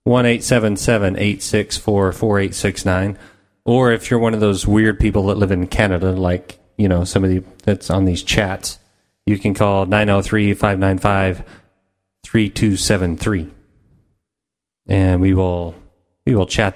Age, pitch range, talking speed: 30-49, 90-115 Hz, 145 wpm